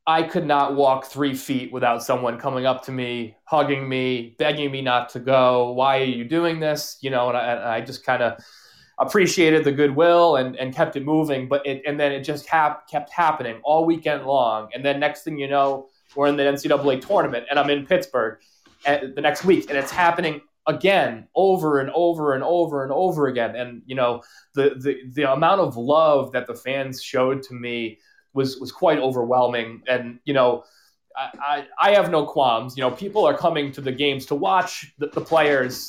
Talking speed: 205 wpm